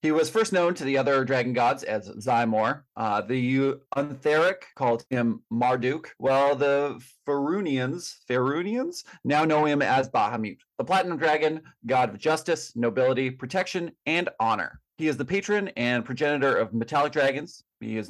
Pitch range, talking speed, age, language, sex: 120-150 Hz, 160 wpm, 30-49, English, male